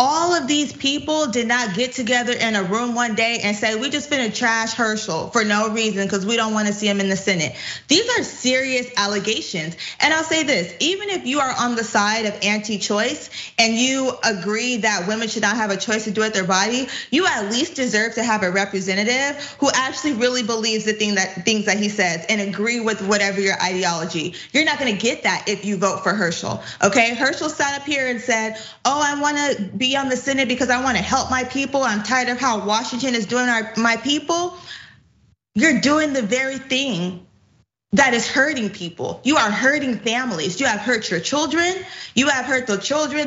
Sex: female